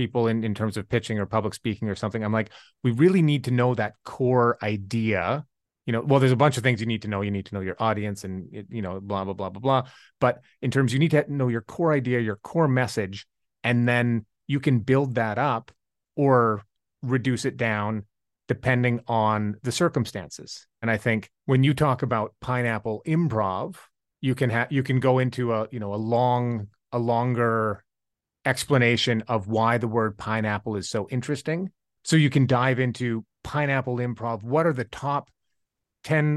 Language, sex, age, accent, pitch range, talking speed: English, male, 30-49, American, 110-140 Hz, 200 wpm